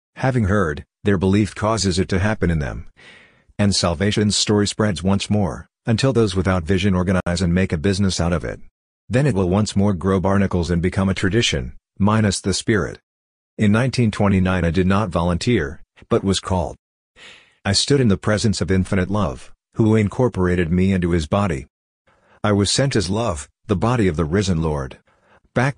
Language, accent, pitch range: English, American, 90-105 Hz